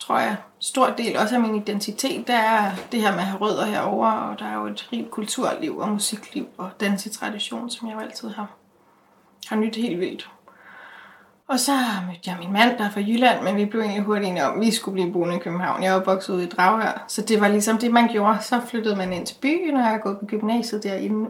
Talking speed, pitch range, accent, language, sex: 240 wpm, 205-230 Hz, native, Danish, female